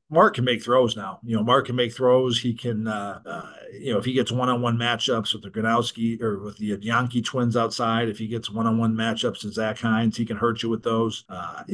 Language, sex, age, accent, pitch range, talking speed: English, male, 40-59, American, 105-115 Hz, 240 wpm